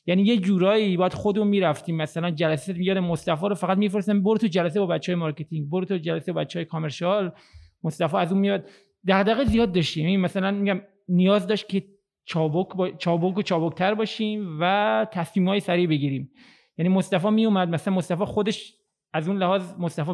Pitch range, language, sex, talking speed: 170-205 Hz, Persian, male, 180 wpm